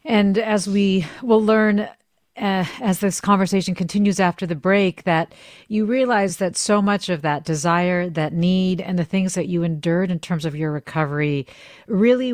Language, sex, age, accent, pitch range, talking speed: English, female, 40-59, American, 160-200 Hz, 175 wpm